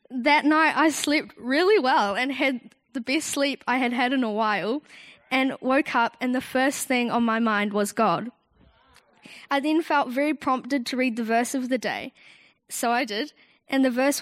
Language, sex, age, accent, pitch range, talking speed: English, female, 10-29, Australian, 230-280 Hz, 200 wpm